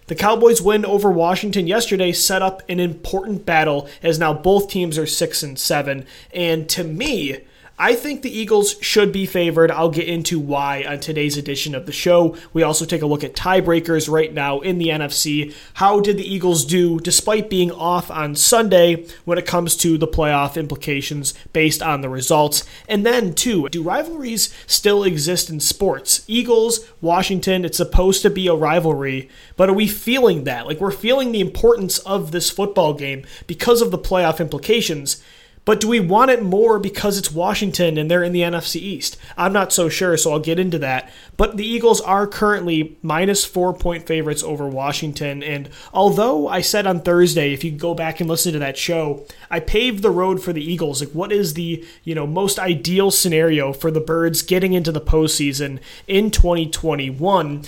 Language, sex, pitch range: English, male, 155-195 Hz